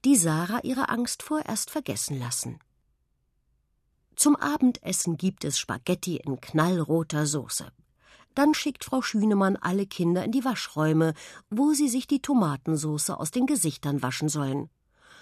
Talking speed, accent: 135 wpm, German